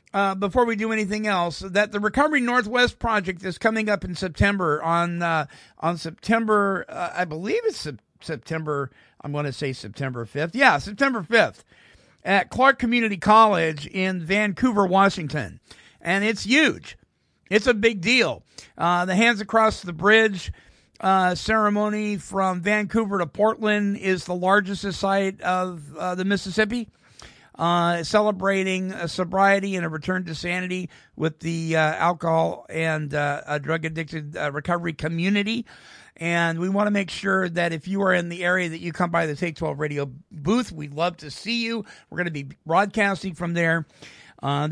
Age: 50-69